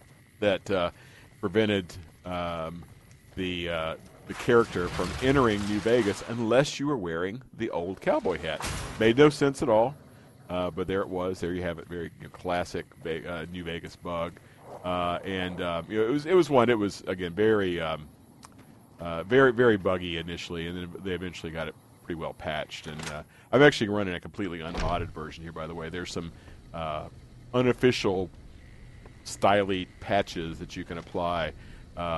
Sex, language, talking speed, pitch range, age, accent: male, English, 180 wpm, 85-110 Hz, 40-59, American